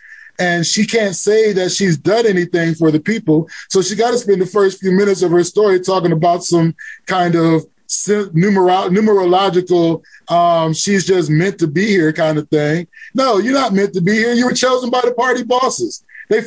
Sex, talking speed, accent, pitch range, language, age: male, 195 wpm, American, 170-220 Hz, English, 20-39